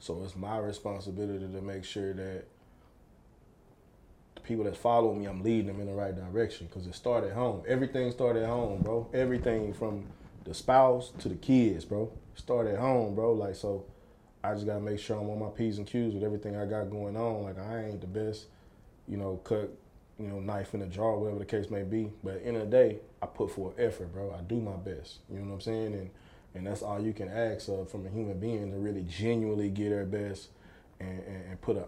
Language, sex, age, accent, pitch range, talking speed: English, male, 20-39, American, 95-115 Hz, 235 wpm